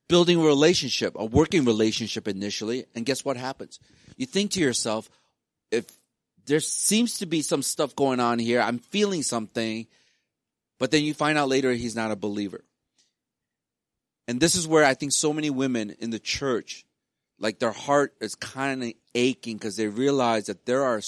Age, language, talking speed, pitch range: 40-59, English, 180 wpm, 110-140 Hz